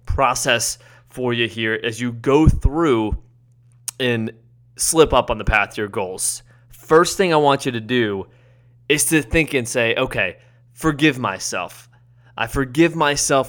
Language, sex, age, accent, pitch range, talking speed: English, male, 20-39, American, 120-155 Hz, 155 wpm